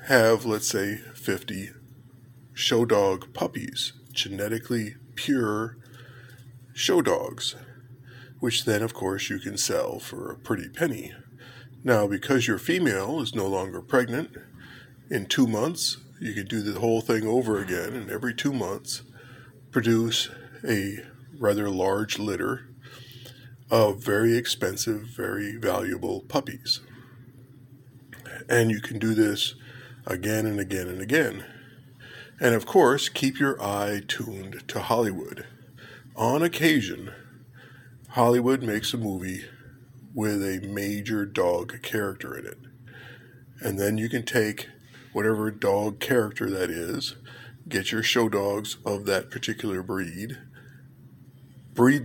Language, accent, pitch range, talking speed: English, American, 110-130 Hz, 125 wpm